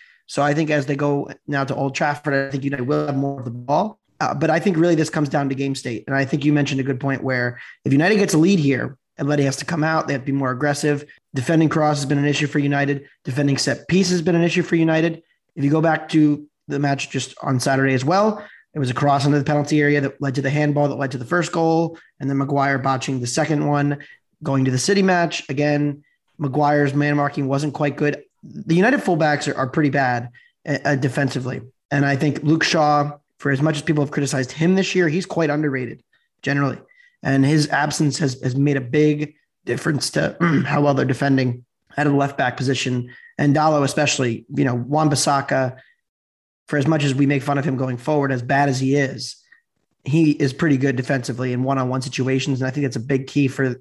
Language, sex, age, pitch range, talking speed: English, male, 20-39, 135-150 Hz, 230 wpm